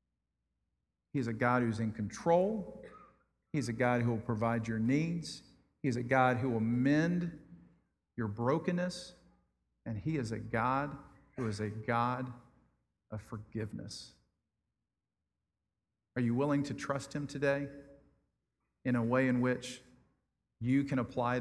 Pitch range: 110-130 Hz